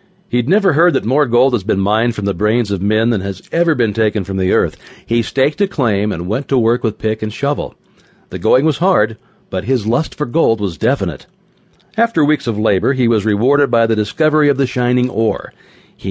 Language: English